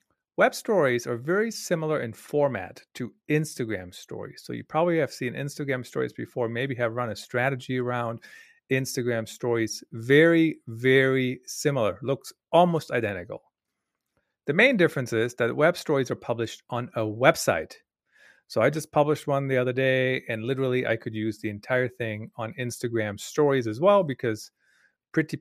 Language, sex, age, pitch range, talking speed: English, male, 40-59, 115-150 Hz, 160 wpm